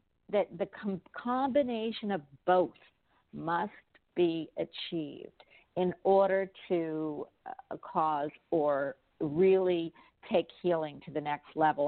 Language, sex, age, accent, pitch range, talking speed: English, female, 50-69, American, 165-215 Hz, 105 wpm